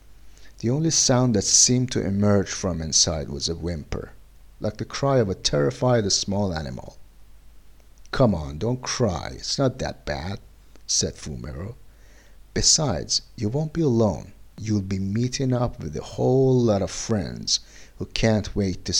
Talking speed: 155 wpm